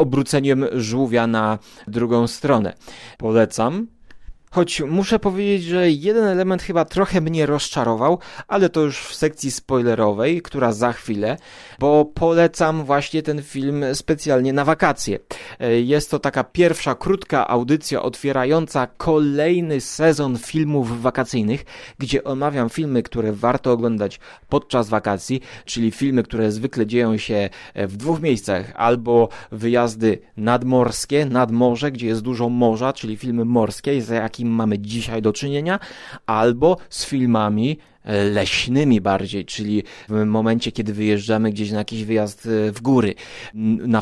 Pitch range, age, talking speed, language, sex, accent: 110-145 Hz, 30-49, 130 wpm, Polish, male, native